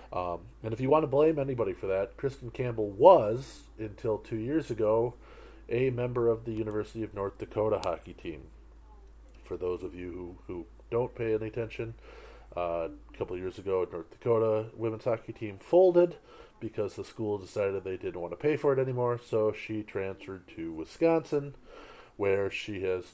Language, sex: English, male